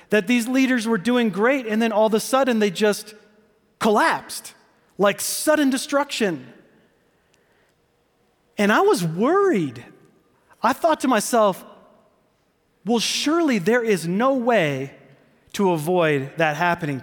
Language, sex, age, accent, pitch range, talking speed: English, male, 30-49, American, 150-215 Hz, 125 wpm